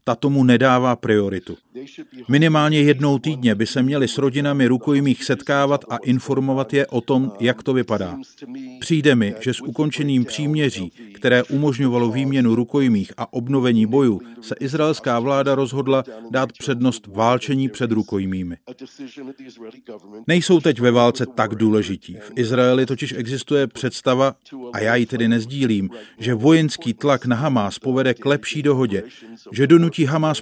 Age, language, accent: 40-59, Czech, native